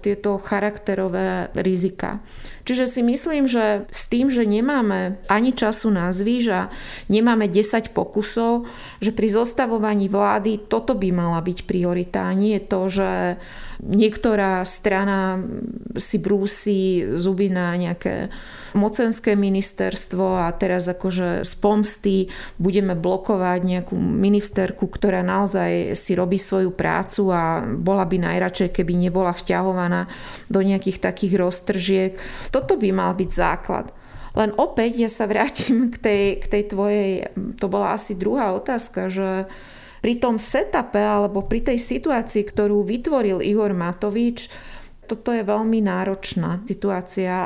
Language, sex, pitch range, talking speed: Slovak, female, 190-220 Hz, 130 wpm